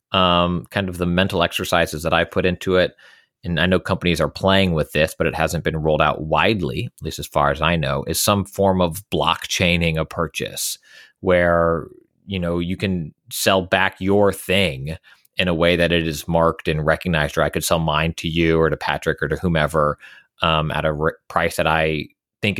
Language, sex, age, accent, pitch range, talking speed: English, male, 30-49, American, 85-105 Hz, 210 wpm